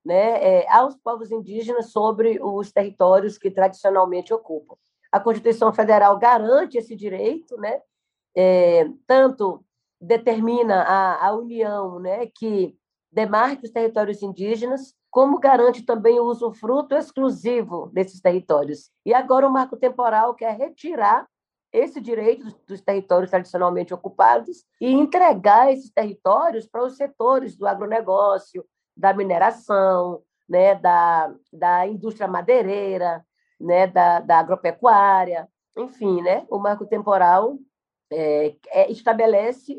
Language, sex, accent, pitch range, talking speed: Portuguese, female, Brazilian, 190-245 Hz, 115 wpm